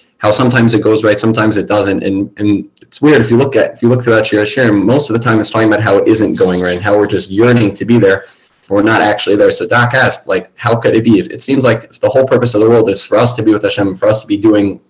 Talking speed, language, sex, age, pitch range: 300 wpm, English, male, 20-39, 100-120 Hz